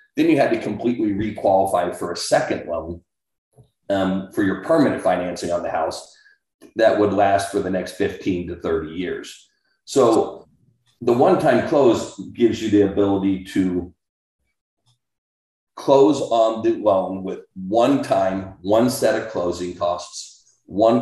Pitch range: 90-105 Hz